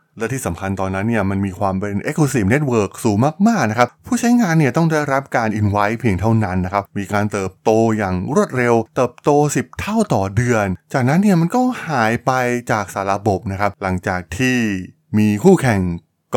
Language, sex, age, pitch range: Thai, male, 20-39, 95-130 Hz